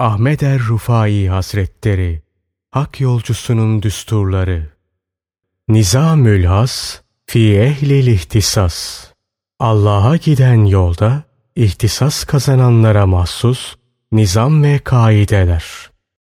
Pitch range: 100-130 Hz